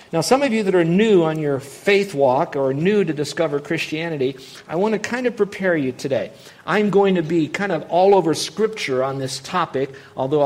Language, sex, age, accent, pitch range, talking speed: English, male, 50-69, American, 135-180 Hz, 210 wpm